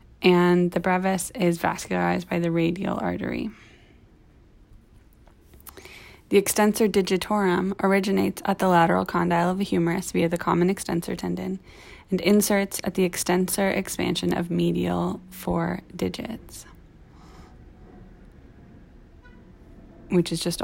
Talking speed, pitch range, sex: 110 wpm, 170-195 Hz, female